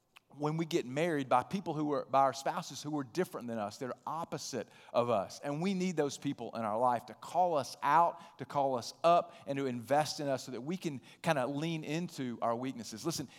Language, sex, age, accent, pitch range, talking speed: English, male, 40-59, American, 130-170 Hz, 235 wpm